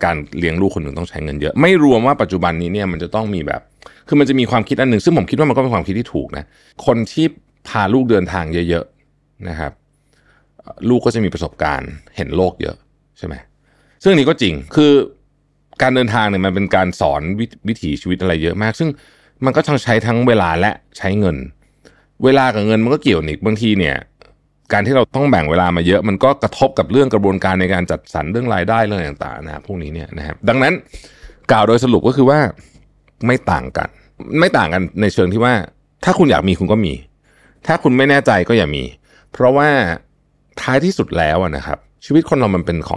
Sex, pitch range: male, 85-125 Hz